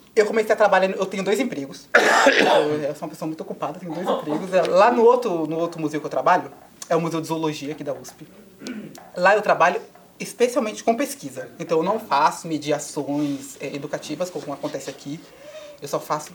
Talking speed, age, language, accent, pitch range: 195 wpm, 30-49, Portuguese, Brazilian, 150-220 Hz